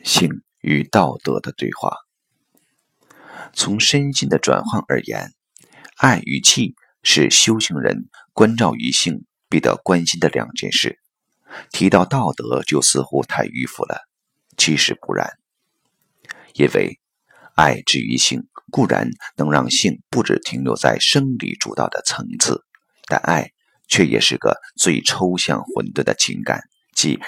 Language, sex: Chinese, male